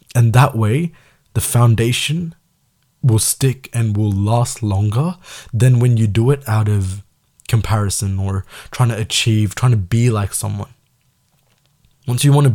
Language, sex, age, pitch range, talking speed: Tamil, male, 20-39, 100-125 Hz, 155 wpm